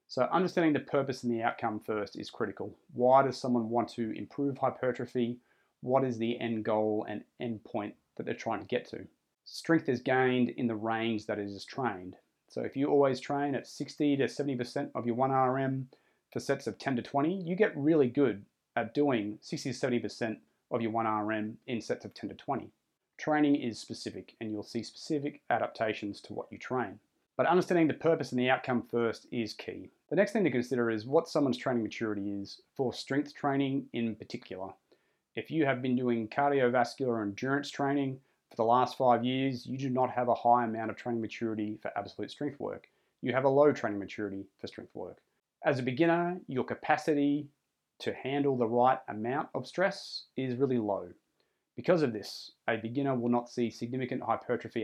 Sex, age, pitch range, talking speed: male, 30-49, 115-140 Hz, 195 wpm